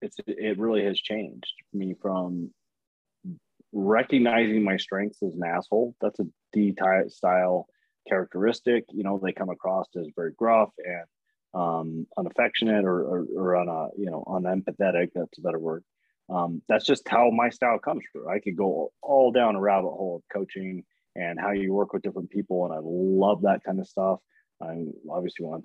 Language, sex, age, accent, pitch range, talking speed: English, male, 30-49, American, 85-105 Hz, 180 wpm